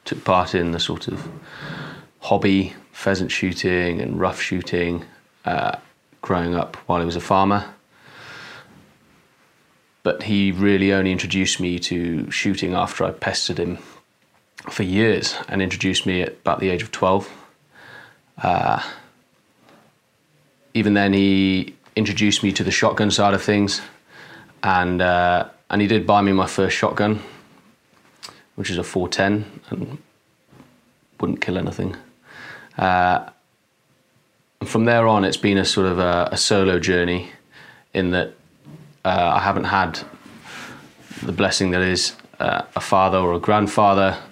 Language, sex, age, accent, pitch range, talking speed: English, male, 20-39, British, 90-100 Hz, 140 wpm